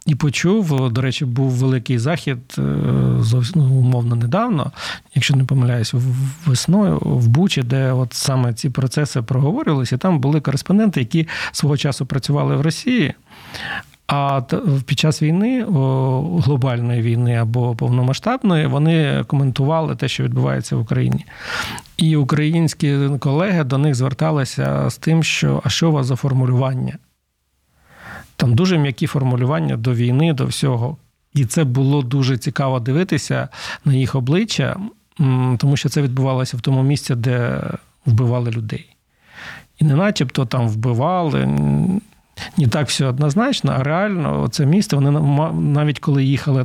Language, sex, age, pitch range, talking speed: Ukrainian, male, 50-69, 125-150 Hz, 135 wpm